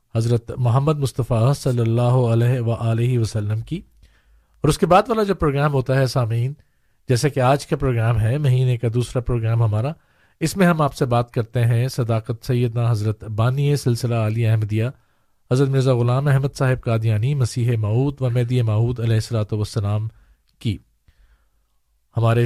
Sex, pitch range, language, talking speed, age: male, 115-130 Hz, Urdu, 165 wpm, 50-69